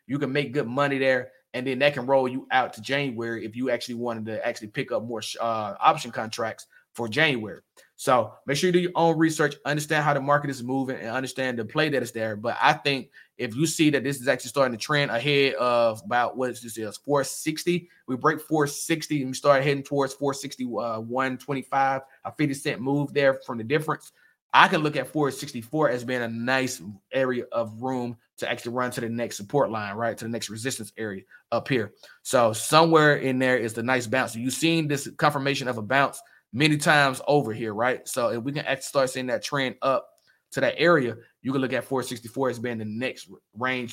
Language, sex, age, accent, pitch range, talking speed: English, male, 20-39, American, 120-145 Hz, 220 wpm